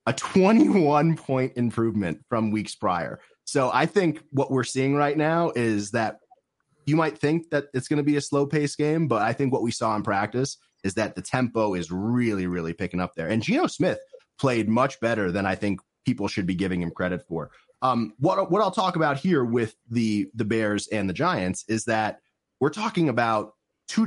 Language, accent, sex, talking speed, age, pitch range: English, American, male, 205 wpm, 30-49, 105-145 Hz